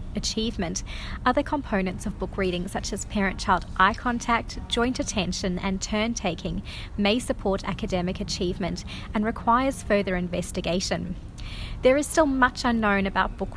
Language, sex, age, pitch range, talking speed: English, female, 30-49, 190-230 Hz, 135 wpm